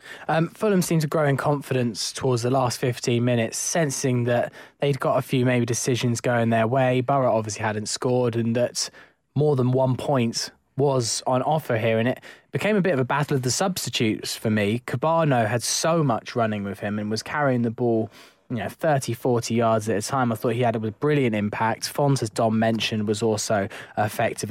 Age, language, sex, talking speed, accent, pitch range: 10-29, English, male, 205 wpm, British, 110-135 Hz